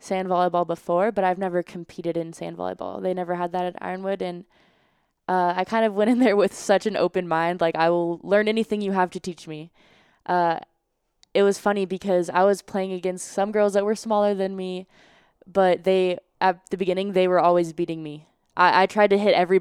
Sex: female